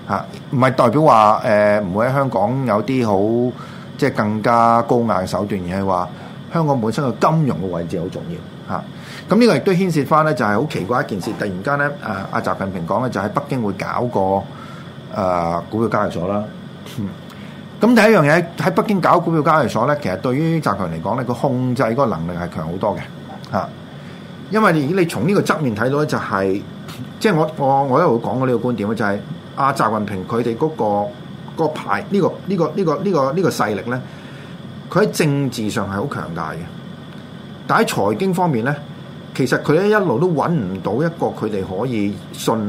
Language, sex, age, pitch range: Chinese, male, 30-49, 105-170 Hz